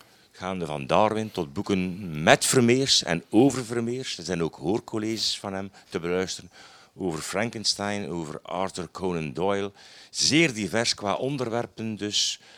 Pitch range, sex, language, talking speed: 80-110 Hz, male, Dutch, 140 wpm